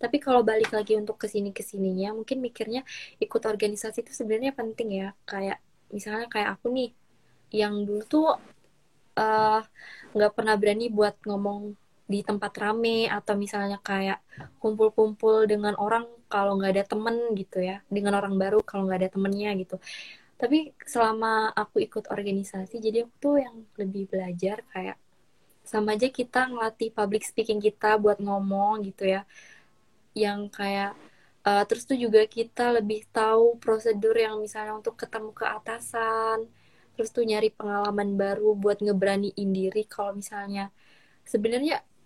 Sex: female